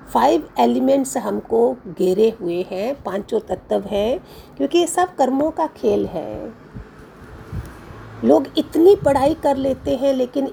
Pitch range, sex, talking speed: 215-270 Hz, female, 130 wpm